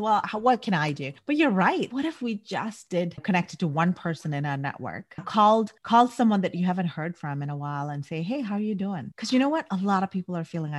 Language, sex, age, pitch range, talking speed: English, female, 30-49, 180-240 Hz, 275 wpm